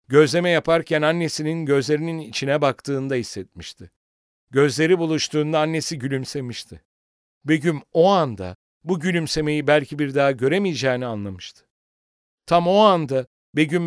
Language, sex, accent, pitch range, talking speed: English, male, Turkish, 100-150 Hz, 110 wpm